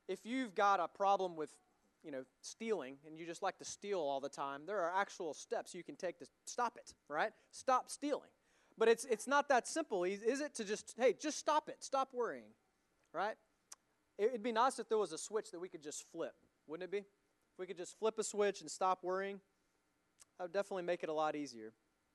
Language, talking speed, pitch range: English, 225 wpm, 140-200 Hz